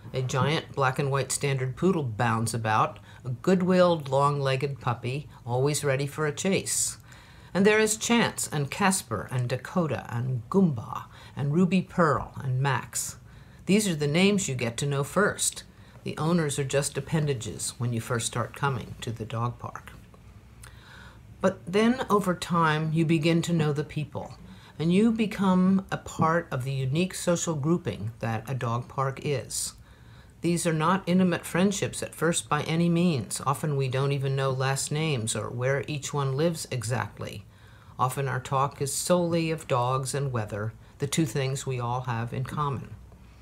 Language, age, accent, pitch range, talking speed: English, 50-69, American, 125-170 Hz, 165 wpm